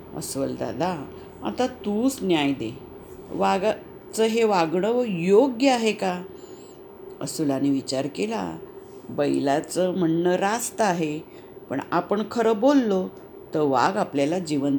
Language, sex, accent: English, female, Indian